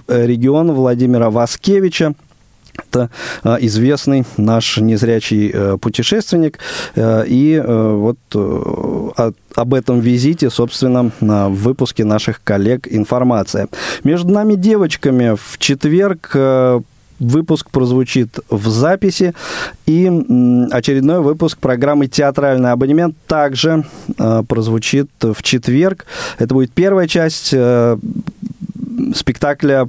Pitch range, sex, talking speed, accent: 120-155 Hz, male, 90 wpm, native